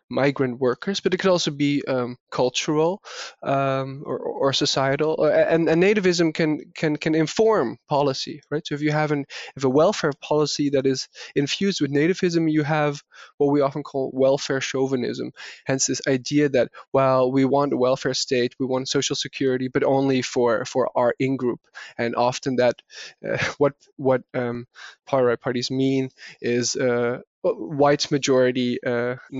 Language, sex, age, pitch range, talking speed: English, male, 20-39, 135-165 Hz, 160 wpm